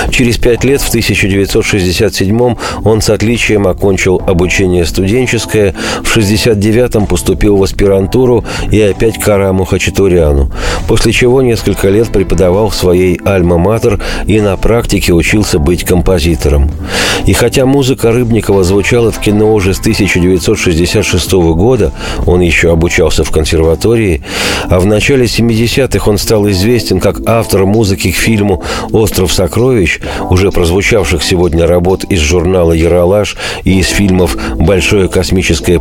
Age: 40-59